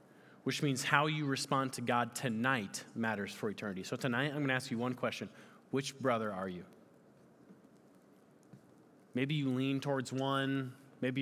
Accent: American